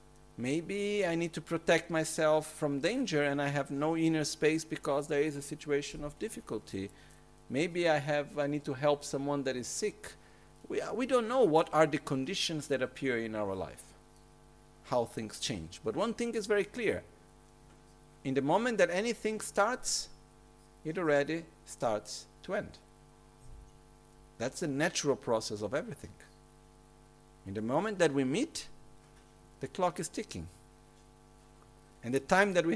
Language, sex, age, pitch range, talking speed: Italian, male, 50-69, 140-175 Hz, 160 wpm